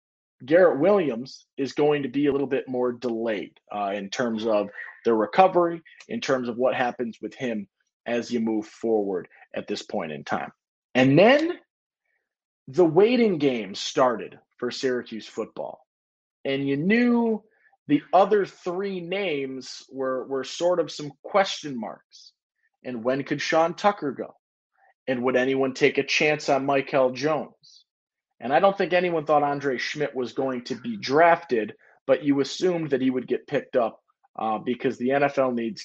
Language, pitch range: English, 125-155 Hz